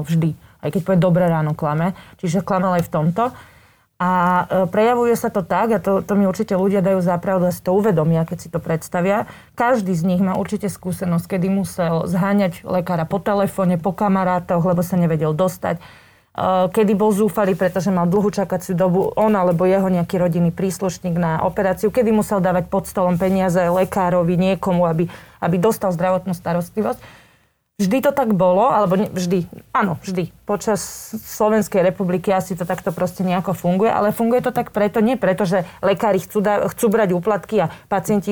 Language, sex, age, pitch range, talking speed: Slovak, female, 30-49, 180-210 Hz, 180 wpm